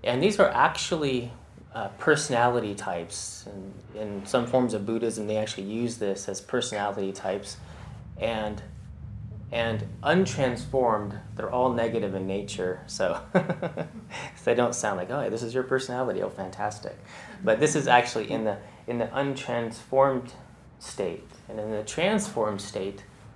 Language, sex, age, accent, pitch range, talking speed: English, male, 30-49, American, 100-120 Hz, 145 wpm